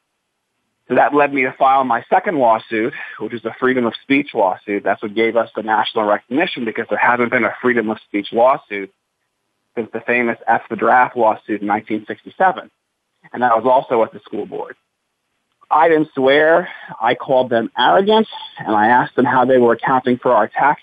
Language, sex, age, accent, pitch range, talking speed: English, male, 40-59, American, 115-175 Hz, 195 wpm